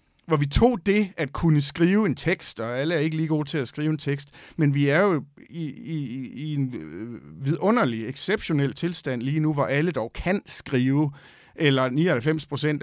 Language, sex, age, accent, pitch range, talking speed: Danish, male, 50-69, native, 120-155 Hz, 185 wpm